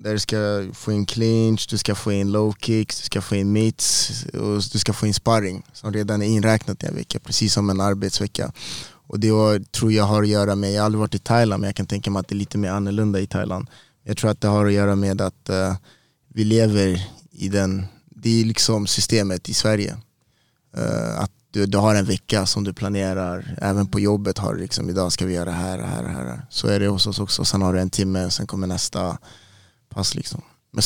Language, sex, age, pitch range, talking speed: Swedish, male, 20-39, 95-110 Hz, 235 wpm